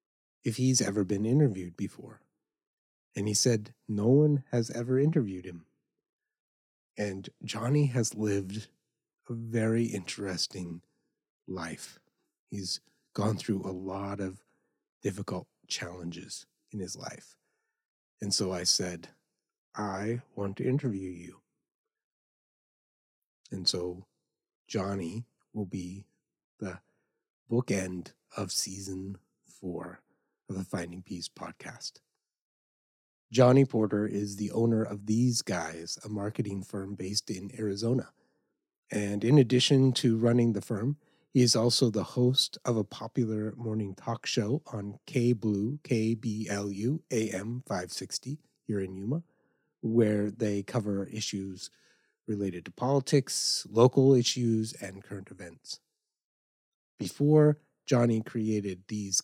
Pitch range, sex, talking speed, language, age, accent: 100-125 Hz, male, 115 wpm, English, 30-49, American